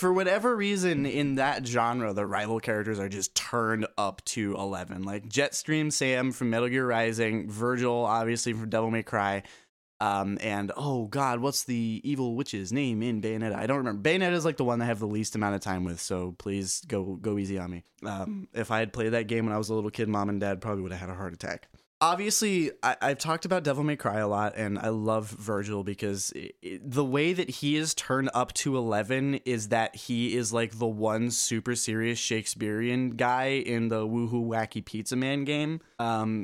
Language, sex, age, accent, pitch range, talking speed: English, male, 20-39, American, 105-130 Hz, 210 wpm